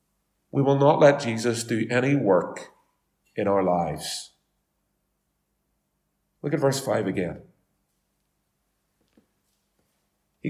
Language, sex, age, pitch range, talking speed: English, male, 40-59, 115-190 Hz, 95 wpm